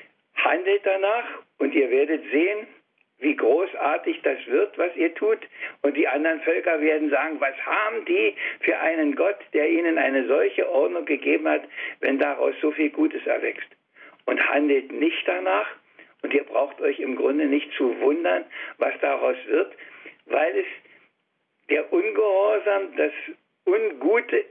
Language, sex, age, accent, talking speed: German, male, 60-79, German, 145 wpm